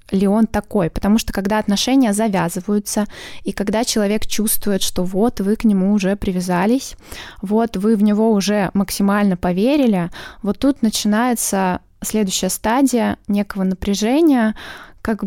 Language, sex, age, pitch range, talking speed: Russian, female, 20-39, 190-225 Hz, 135 wpm